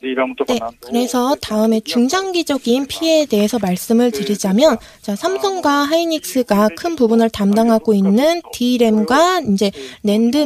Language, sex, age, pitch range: Korean, female, 20-39, 210-285 Hz